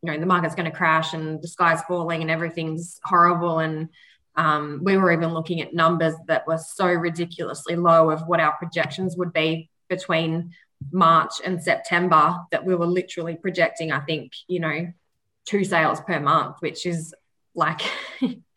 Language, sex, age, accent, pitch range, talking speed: English, female, 20-39, Australian, 160-185 Hz, 170 wpm